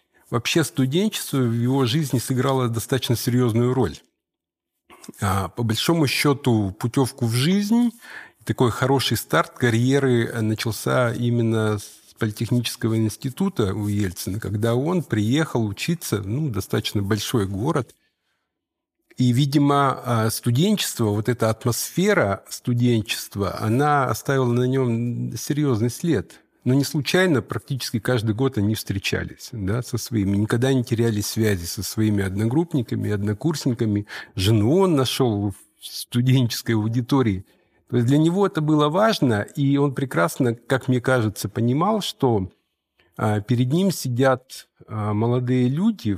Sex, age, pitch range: male, 50-69, 110-140 Hz